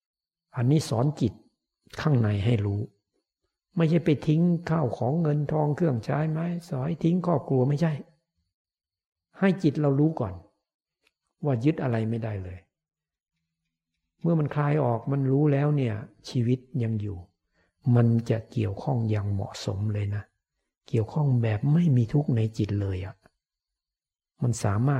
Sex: male